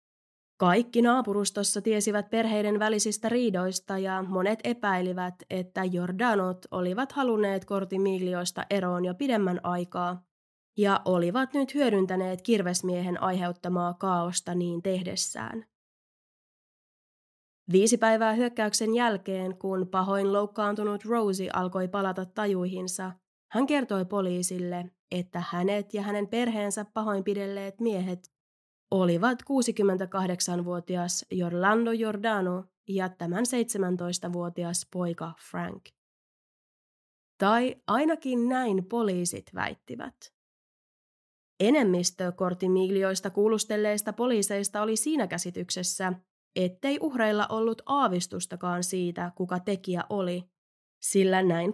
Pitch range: 180-220 Hz